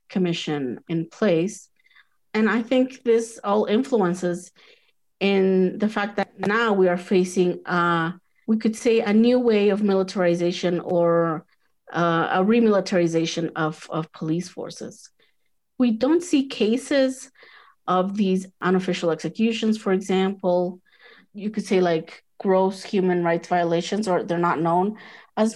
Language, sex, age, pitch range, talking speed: English, female, 30-49, 170-210 Hz, 135 wpm